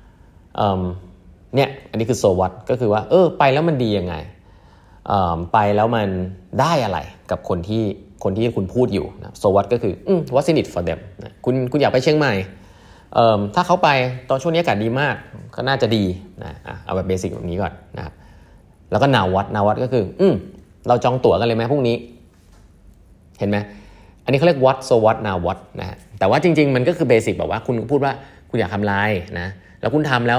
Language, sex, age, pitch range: Thai, male, 20-39, 95-125 Hz